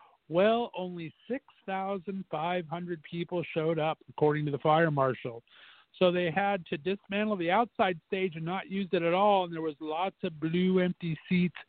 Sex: male